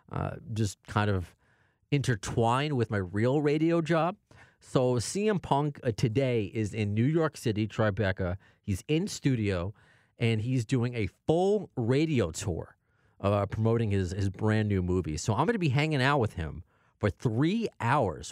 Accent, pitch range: American, 95-130 Hz